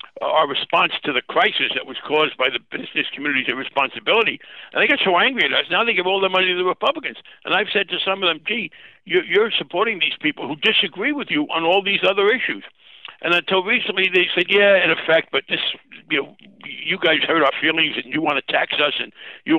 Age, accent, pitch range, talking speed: 60-79, American, 150-205 Hz, 225 wpm